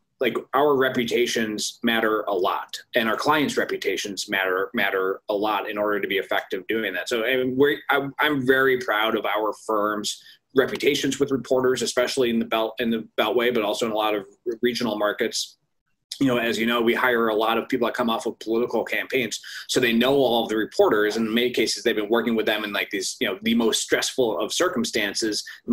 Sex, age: male, 20-39